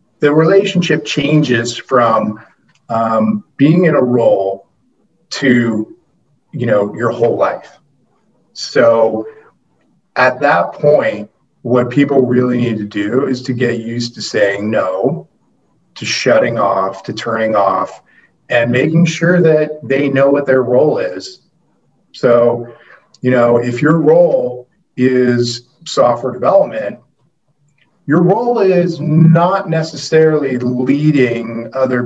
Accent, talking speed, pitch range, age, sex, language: American, 120 wpm, 120-155 Hz, 40-59, male, English